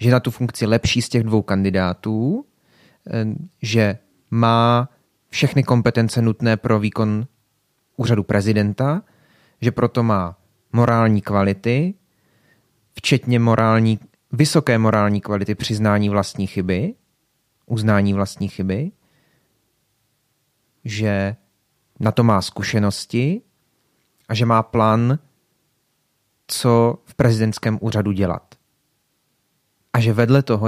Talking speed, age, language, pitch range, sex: 100 wpm, 30-49, Czech, 105-125 Hz, male